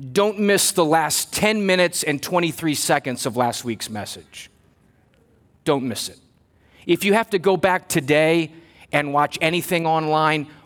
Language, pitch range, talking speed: English, 140-190 Hz, 150 wpm